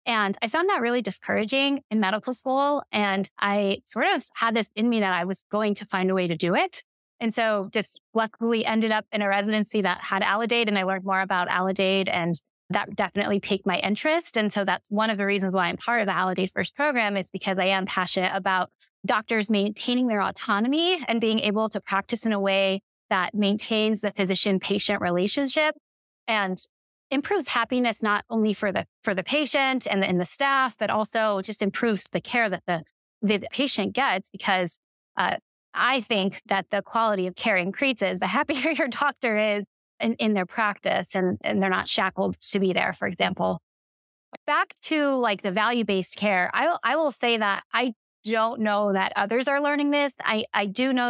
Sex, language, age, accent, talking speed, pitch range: female, English, 20-39, American, 200 wpm, 195-235 Hz